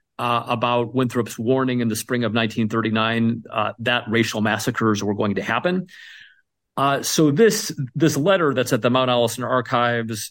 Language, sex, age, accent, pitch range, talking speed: English, male, 40-59, American, 110-130 Hz, 165 wpm